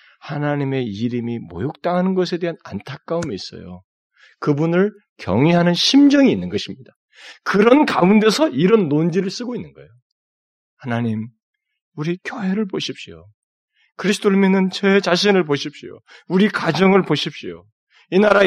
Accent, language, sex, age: native, Korean, male, 40-59